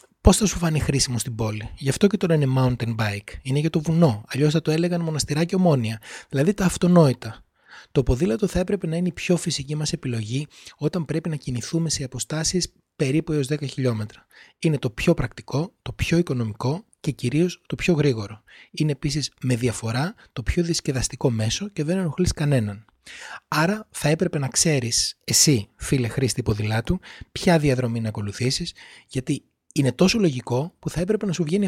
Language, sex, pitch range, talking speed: Greek, male, 125-170 Hz, 180 wpm